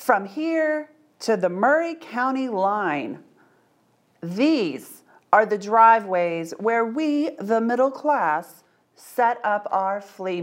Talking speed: 115 wpm